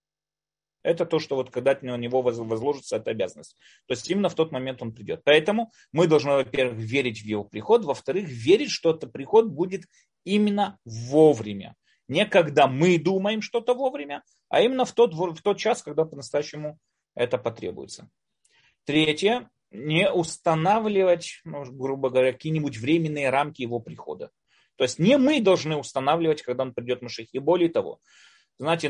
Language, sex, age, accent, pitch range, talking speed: Russian, male, 30-49, native, 130-205 Hz, 155 wpm